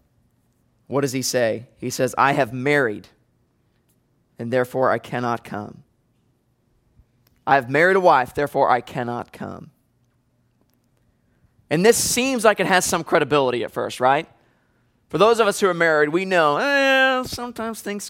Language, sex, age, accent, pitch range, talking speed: English, male, 30-49, American, 145-215 Hz, 155 wpm